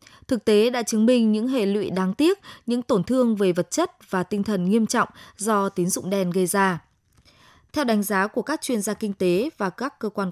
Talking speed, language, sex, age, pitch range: 235 wpm, Vietnamese, female, 20-39, 185-240 Hz